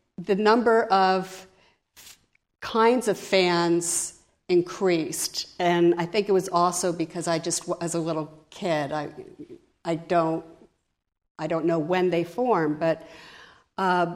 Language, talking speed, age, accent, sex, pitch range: English, 135 wpm, 50-69, American, female, 170-200 Hz